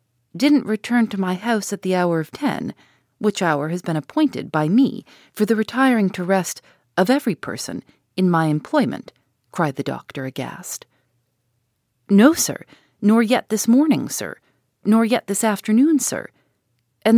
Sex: female